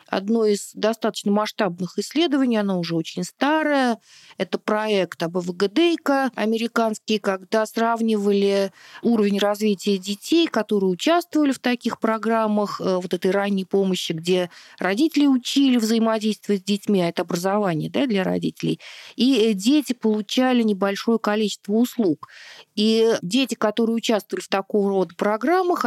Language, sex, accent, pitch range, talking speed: Russian, female, native, 195-230 Hz, 120 wpm